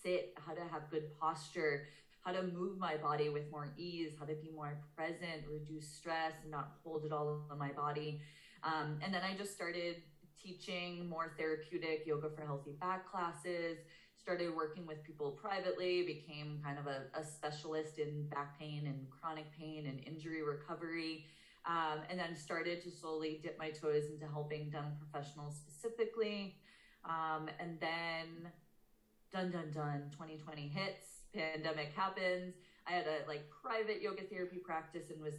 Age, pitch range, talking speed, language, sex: 20-39, 150-175 Hz, 165 wpm, English, female